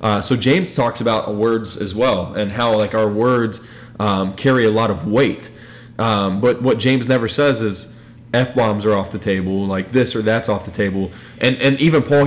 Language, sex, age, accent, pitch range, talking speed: English, male, 20-39, American, 105-125 Hz, 205 wpm